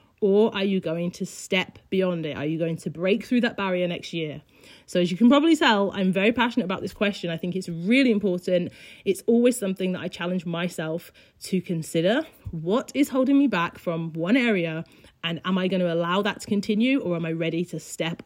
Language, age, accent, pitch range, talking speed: English, 30-49, British, 175-230 Hz, 220 wpm